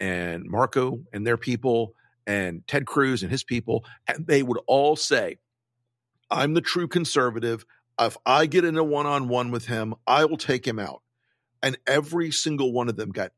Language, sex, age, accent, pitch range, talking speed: English, male, 50-69, American, 115-140 Hz, 175 wpm